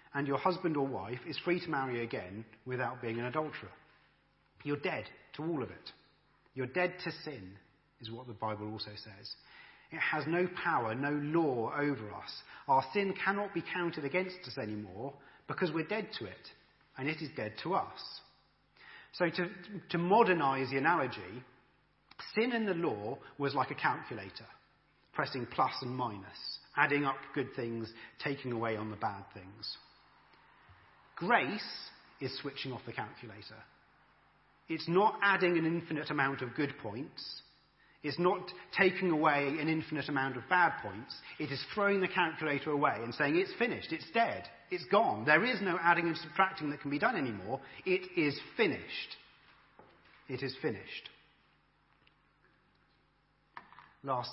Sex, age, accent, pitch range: male, 40-59, British, 120-170 Hz